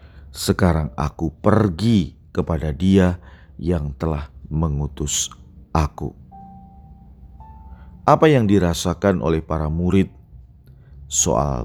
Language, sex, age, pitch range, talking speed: Indonesian, male, 40-59, 75-90 Hz, 80 wpm